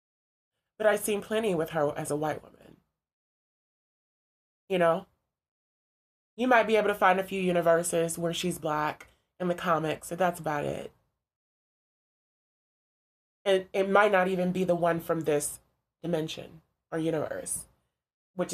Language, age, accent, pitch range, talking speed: English, 20-39, American, 160-195 Hz, 145 wpm